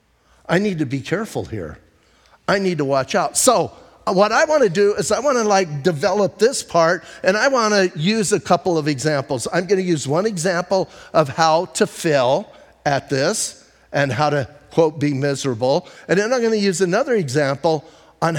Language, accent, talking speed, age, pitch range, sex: English, American, 185 wpm, 50-69, 140-185 Hz, male